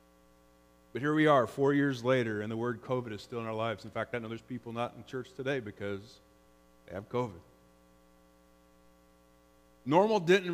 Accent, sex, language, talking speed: American, male, English, 180 wpm